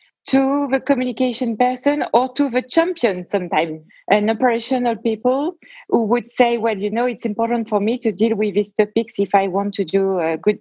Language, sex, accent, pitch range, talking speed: English, female, French, 195-250 Hz, 190 wpm